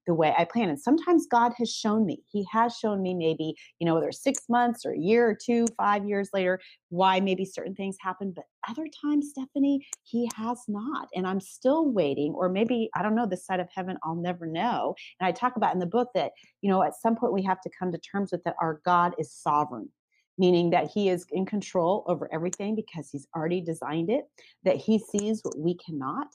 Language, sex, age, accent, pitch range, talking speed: English, female, 30-49, American, 160-230 Hz, 230 wpm